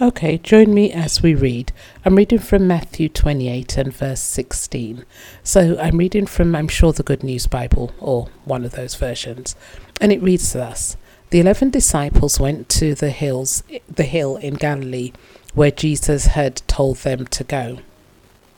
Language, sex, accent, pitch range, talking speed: English, female, British, 135-175 Hz, 165 wpm